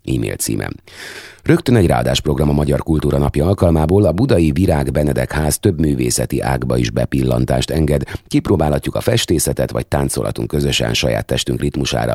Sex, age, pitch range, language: male, 30-49, 65-90 Hz, Hungarian